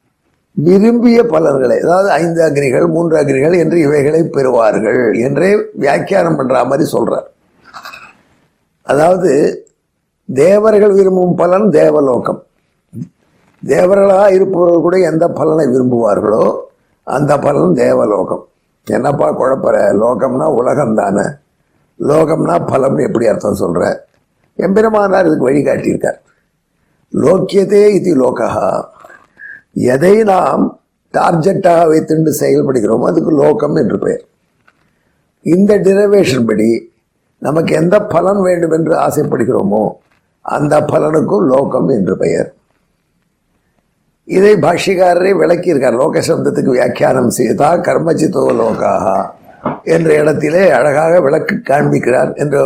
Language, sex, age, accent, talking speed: Tamil, male, 50-69, native, 95 wpm